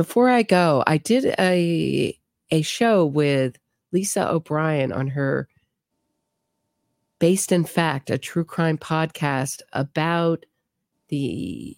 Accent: American